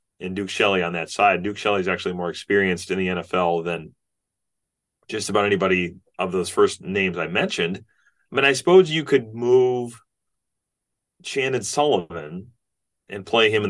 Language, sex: English, male